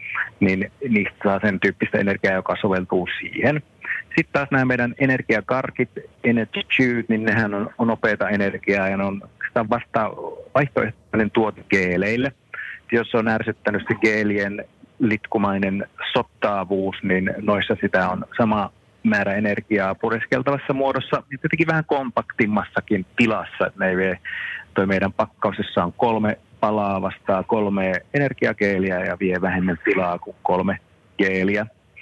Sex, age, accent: male, 30-49, native